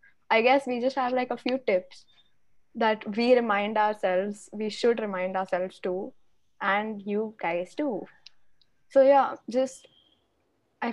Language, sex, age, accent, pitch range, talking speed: English, female, 10-29, Indian, 200-255 Hz, 145 wpm